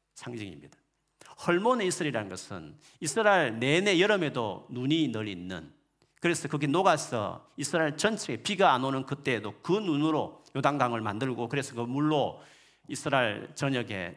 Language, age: Korean, 40-59